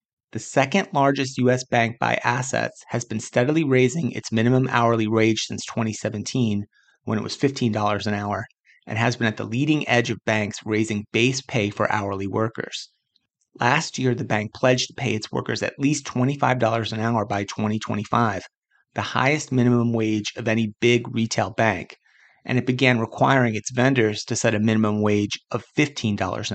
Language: English